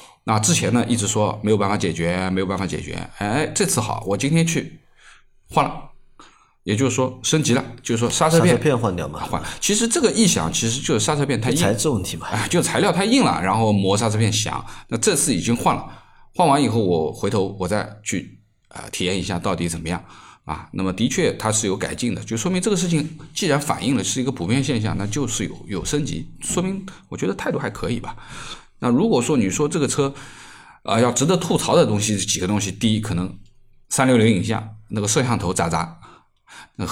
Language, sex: Chinese, male